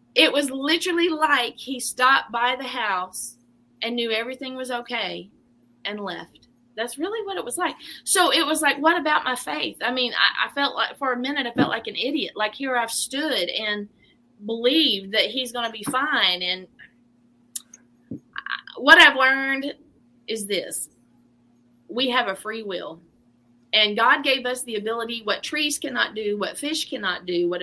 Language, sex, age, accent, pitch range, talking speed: English, female, 30-49, American, 195-265 Hz, 175 wpm